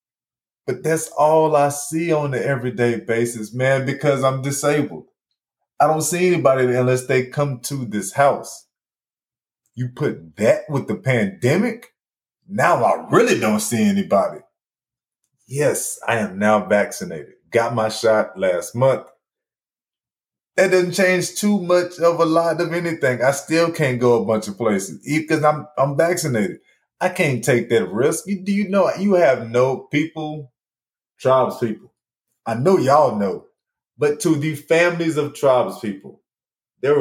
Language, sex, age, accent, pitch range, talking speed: English, male, 20-39, American, 115-160 Hz, 150 wpm